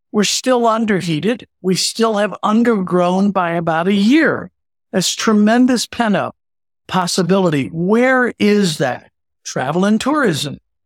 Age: 60-79